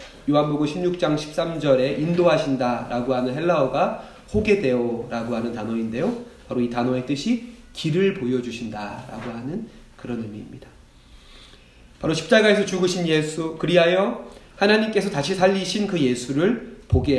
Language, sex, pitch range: Korean, male, 125-185 Hz